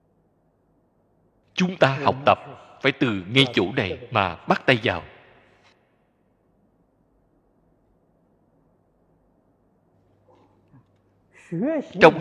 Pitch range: 95-155 Hz